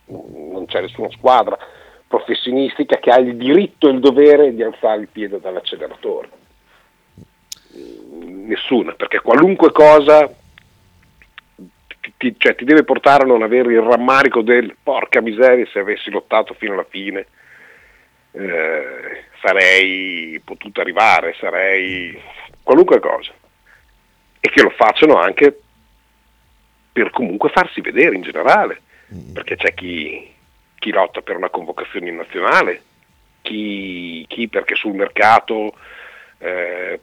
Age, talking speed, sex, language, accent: 50-69, 120 wpm, male, Italian, native